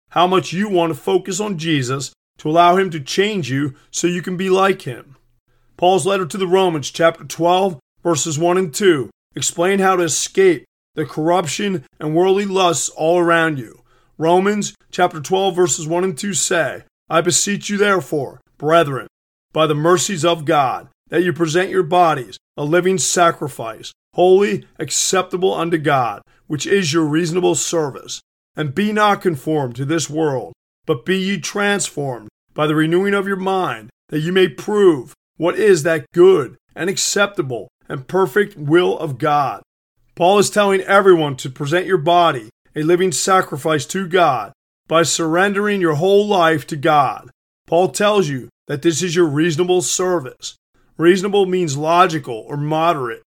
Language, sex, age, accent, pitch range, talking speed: English, male, 30-49, American, 155-190 Hz, 160 wpm